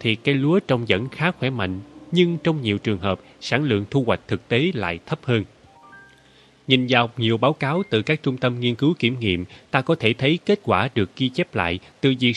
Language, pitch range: Vietnamese, 105-155 Hz